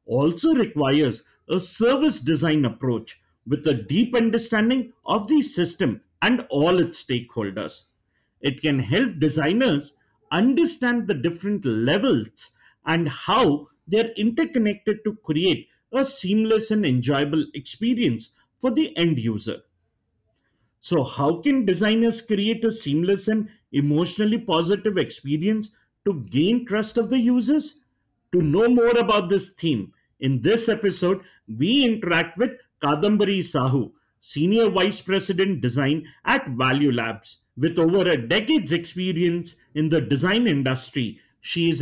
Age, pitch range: 50-69, 145-220 Hz